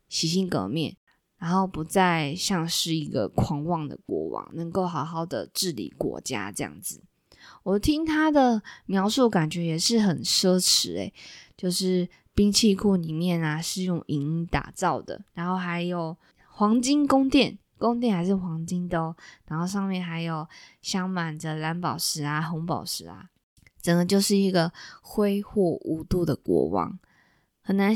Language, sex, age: Chinese, female, 20-39